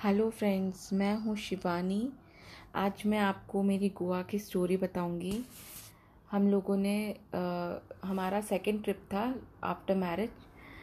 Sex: female